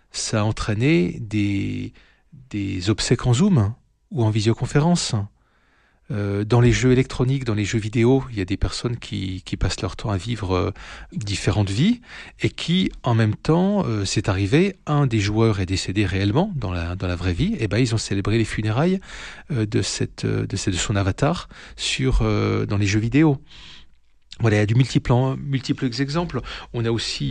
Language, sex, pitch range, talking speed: French, male, 100-130 Hz, 180 wpm